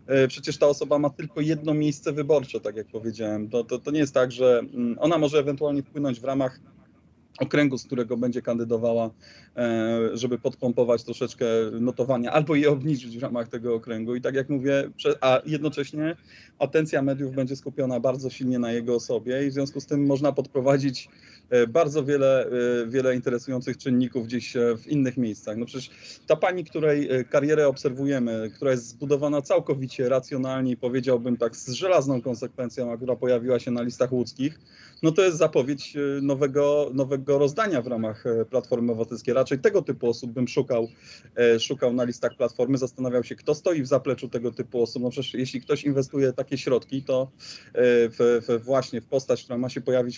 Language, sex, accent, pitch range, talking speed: Polish, male, native, 120-140 Hz, 170 wpm